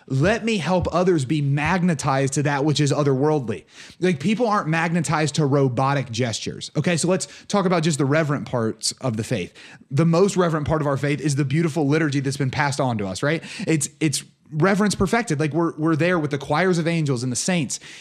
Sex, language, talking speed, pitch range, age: male, English, 215 wpm, 140-175 Hz, 30-49